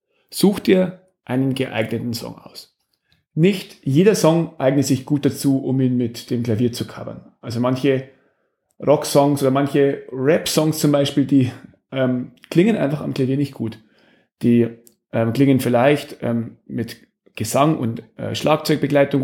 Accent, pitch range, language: German, 120-145 Hz, German